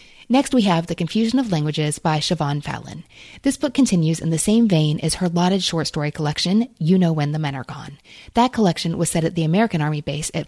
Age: 30-49